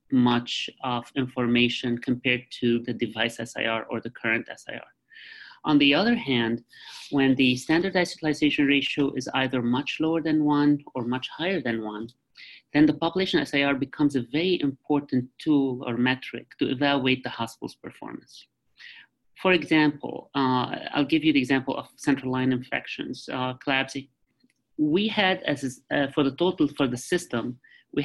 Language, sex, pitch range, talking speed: English, male, 120-145 Hz, 155 wpm